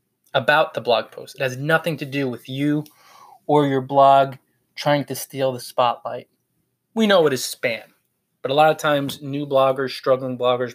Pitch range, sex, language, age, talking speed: 130-170 Hz, male, English, 20-39, 185 wpm